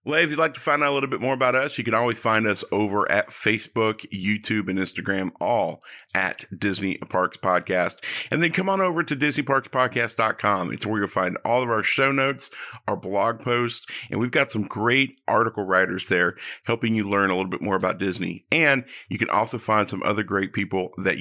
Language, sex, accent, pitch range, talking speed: English, male, American, 100-130 Hz, 210 wpm